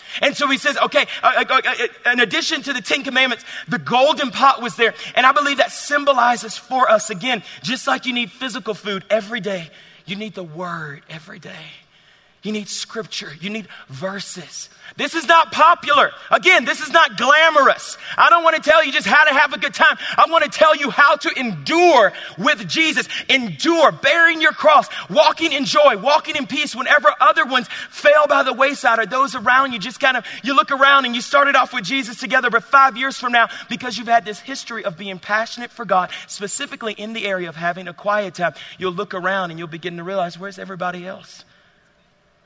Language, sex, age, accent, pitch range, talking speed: English, male, 30-49, American, 185-270 Hz, 205 wpm